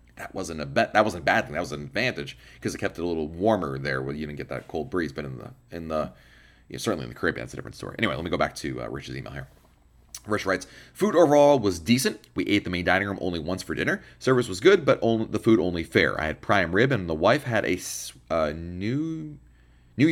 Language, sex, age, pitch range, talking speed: English, male, 30-49, 85-110 Hz, 260 wpm